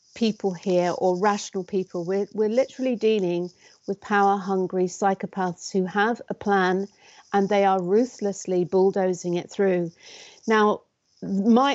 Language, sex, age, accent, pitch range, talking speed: English, female, 40-59, British, 185-225 Hz, 130 wpm